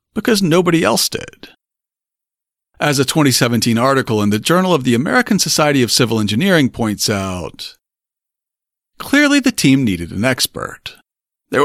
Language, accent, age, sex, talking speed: English, American, 50-69, male, 140 wpm